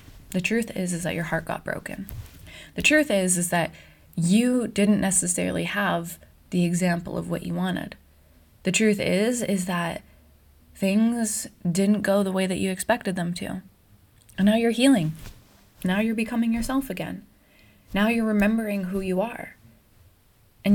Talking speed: 160 wpm